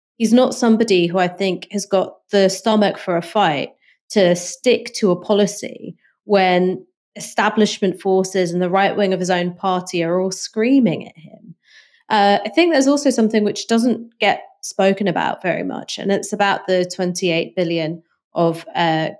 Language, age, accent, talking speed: English, 30-49, British, 170 wpm